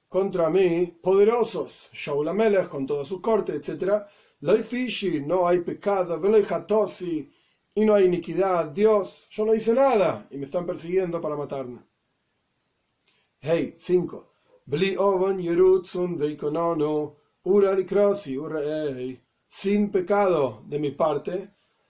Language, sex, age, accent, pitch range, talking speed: Spanish, male, 40-59, Argentinian, 155-200 Hz, 95 wpm